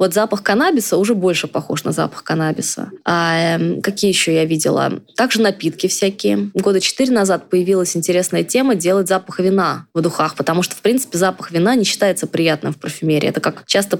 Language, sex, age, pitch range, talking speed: Russian, female, 20-39, 165-200 Hz, 175 wpm